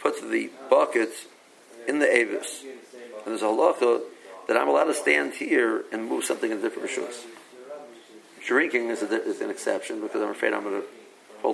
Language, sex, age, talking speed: English, male, 50-69, 180 wpm